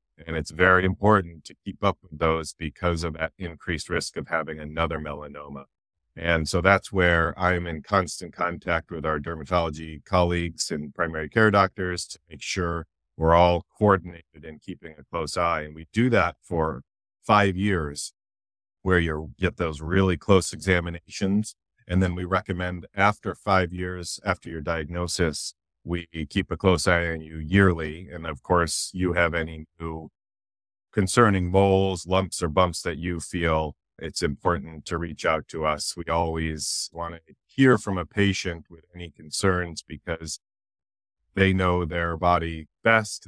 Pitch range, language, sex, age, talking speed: 80-95 Hz, English, male, 40-59, 160 wpm